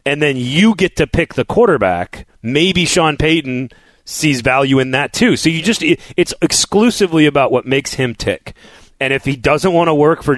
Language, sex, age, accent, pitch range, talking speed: English, male, 30-49, American, 120-165 Hz, 195 wpm